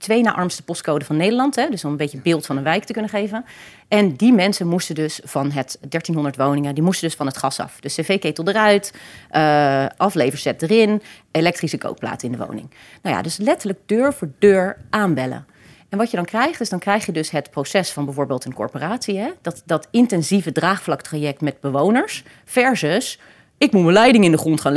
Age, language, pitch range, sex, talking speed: 30-49, Dutch, 150-220 Hz, female, 205 wpm